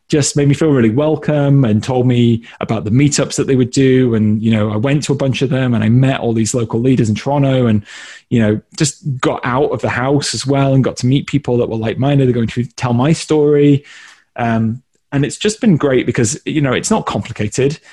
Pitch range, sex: 115-140 Hz, male